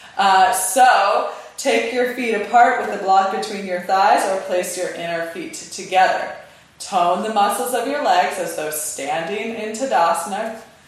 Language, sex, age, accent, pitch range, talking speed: English, female, 20-39, American, 175-235 Hz, 160 wpm